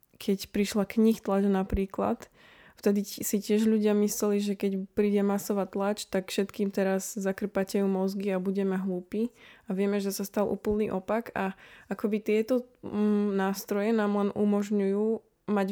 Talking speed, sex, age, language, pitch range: 145 wpm, female, 20-39, Slovak, 195-215 Hz